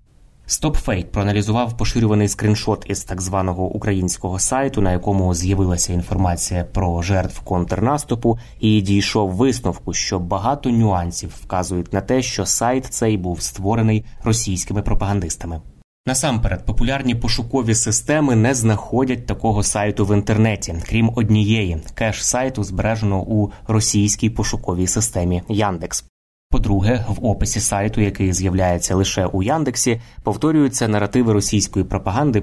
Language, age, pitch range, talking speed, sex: Ukrainian, 20-39, 95-110 Hz, 120 wpm, male